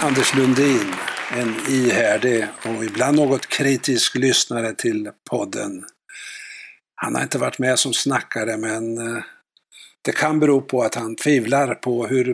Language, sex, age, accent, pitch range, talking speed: Swedish, male, 60-79, native, 110-130 Hz, 135 wpm